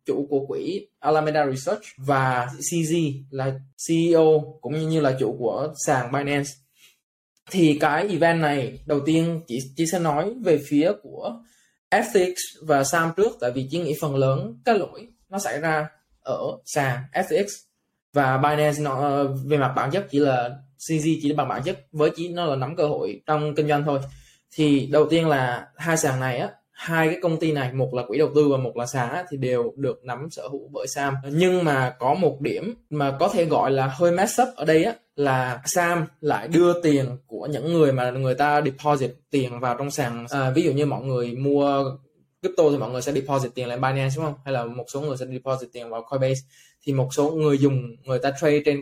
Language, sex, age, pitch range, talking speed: Vietnamese, male, 20-39, 135-160 Hz, 210 wpm